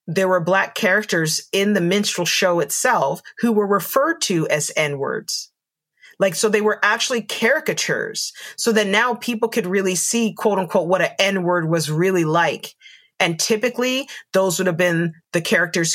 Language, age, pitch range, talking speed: English, 30-49, 175-230 Hz, 175 wpm